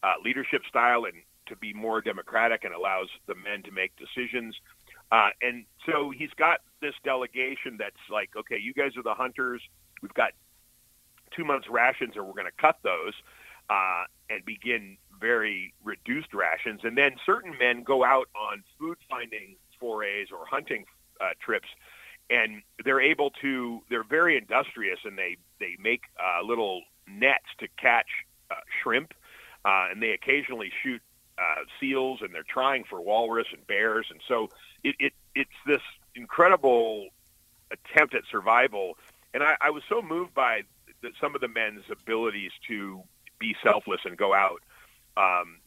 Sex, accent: male, American